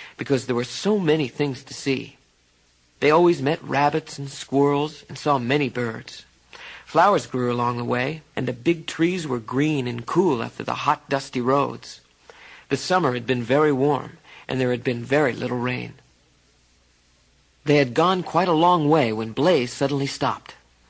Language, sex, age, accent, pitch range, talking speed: English, male, 50-69, American, 120-155 Hz, 170 wpm